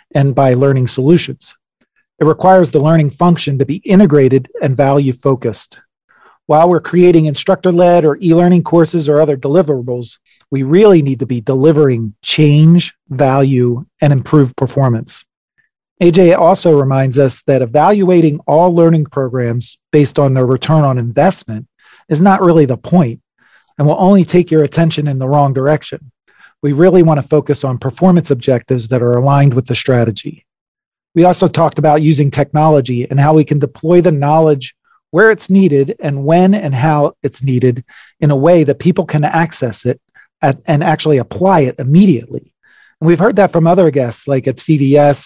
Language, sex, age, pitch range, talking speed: English, male, 40-59, 135-165 Hz, 165 wpm